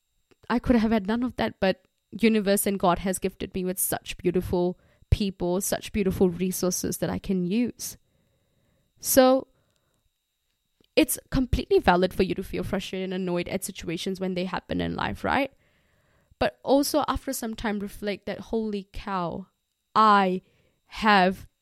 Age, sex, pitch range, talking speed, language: 20-39, female, 185-215 Hz, 155 wpm, English